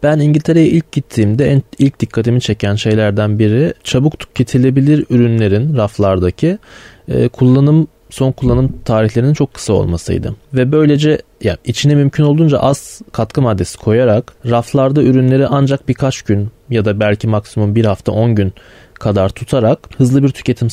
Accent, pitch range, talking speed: native, 105-135 Hz, 145 wpm